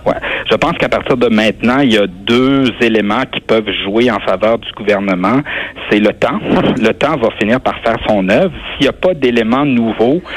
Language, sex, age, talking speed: French, male, 60-79, 210 wpm